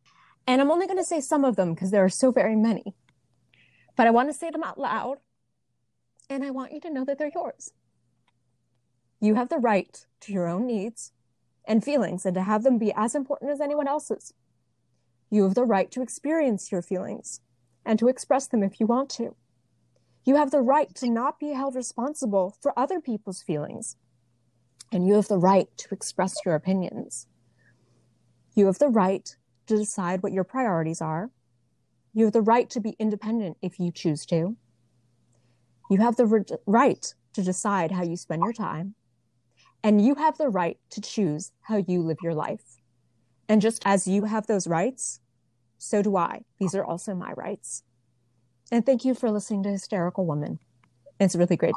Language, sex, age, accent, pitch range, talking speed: English, female, 20-39, American, 145-240 Hz, 185 wpm